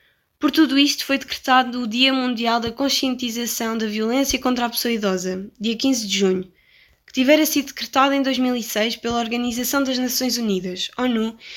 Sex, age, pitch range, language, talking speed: female, 10-29, 230-265 Hz, Portuguese, 165 wpm